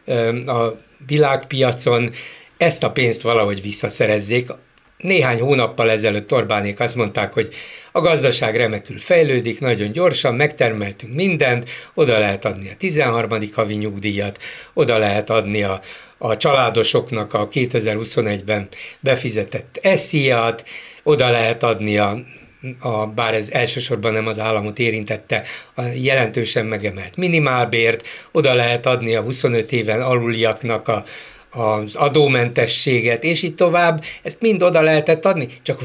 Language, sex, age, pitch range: Hungarian, male, 60-79, 110-140 Hz